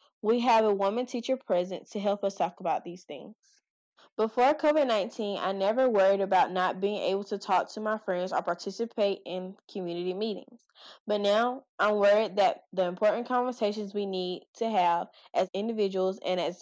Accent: American